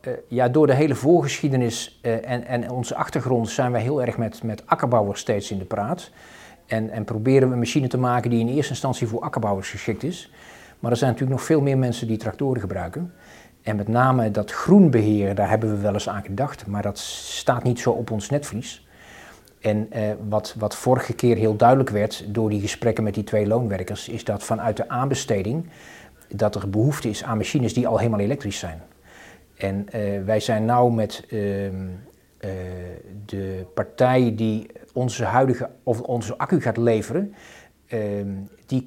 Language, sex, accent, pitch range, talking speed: Dutch, male, Dutch, 105-130 Hz, 185 wpm